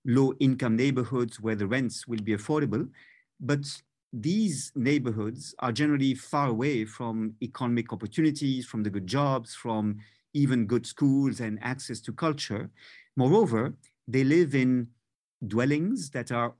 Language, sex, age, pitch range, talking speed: English, male, 50-69, 115-140 Hz, 135 wpm